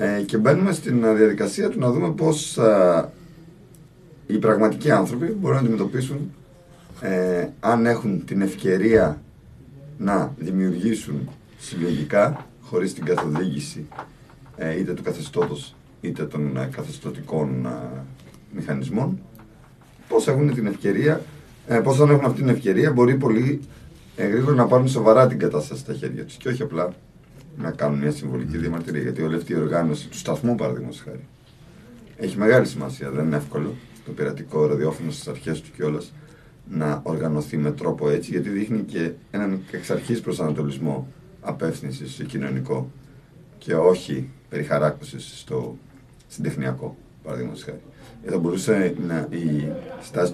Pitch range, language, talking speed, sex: 75-125 Hz, Greek, 130 wpm, male